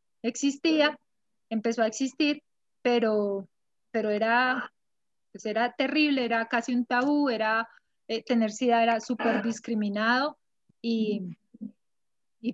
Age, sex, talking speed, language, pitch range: 30-49, female, 105 wpm, Spanish, 215-255 Hz